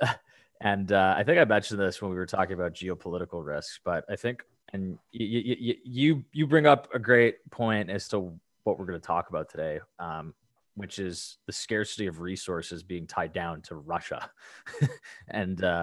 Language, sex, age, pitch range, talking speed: English, male, 20-39, 95-115 Hz, 190 wpm